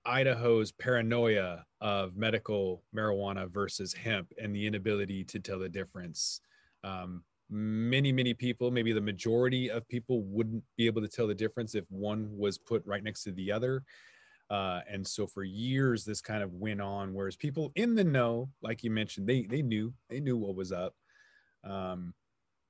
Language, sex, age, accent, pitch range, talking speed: English, male, 30-49, American, 105-130 Hz, 175 wpm